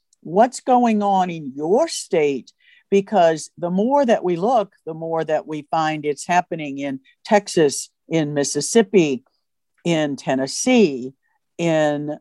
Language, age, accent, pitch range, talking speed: English, 50-69, American, 155-210 Hz, 130 wpm